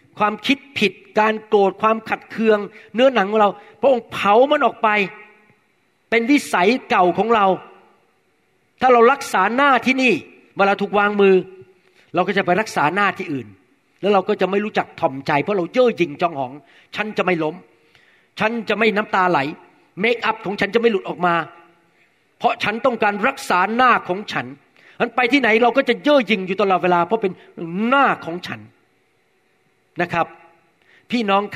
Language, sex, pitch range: Thai, male, 170-220 Hz